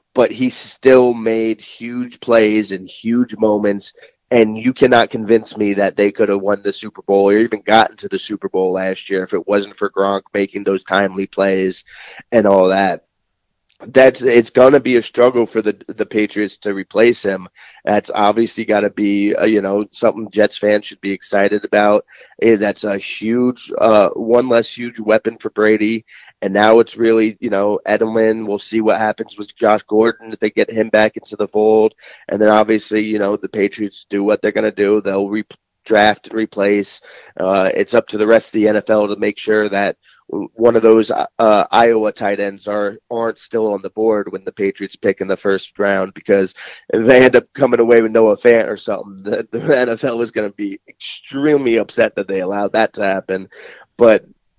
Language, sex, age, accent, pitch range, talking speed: English, male, 30-49, American, 100-115 Hz, 200 wpm